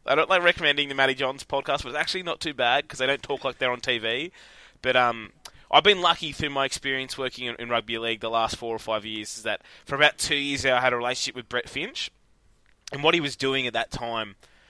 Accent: Australian